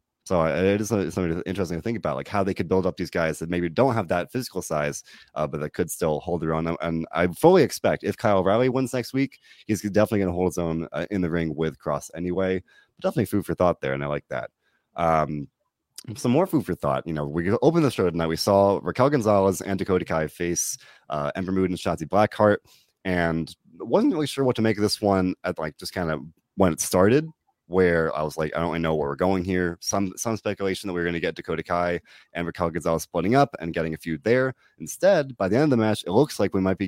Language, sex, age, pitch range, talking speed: English, male, 30-49, 80-100 Hz, 250 wpm